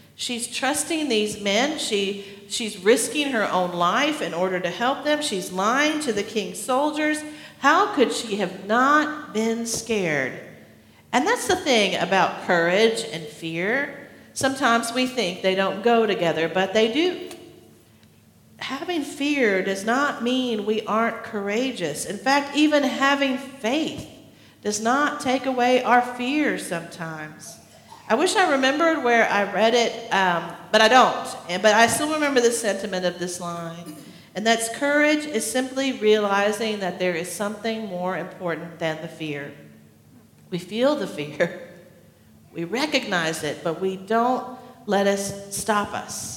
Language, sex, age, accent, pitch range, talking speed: English, female, 50-69, American, 185-260 Hz, 150 wpm